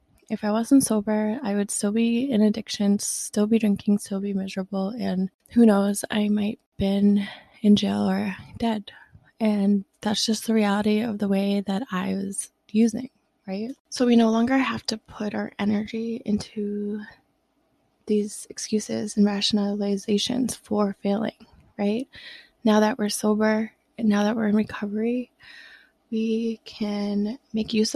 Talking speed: 150 wpm